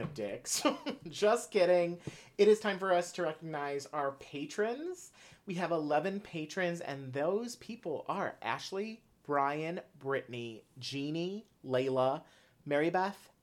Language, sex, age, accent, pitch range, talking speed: English, male, 30-49, American, 130-175 Hz, 120 wpm